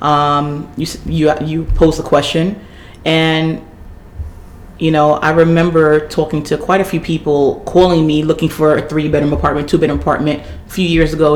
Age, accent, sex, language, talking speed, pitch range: 30-49, American, female, English, 175 wpm, 100-165 Hz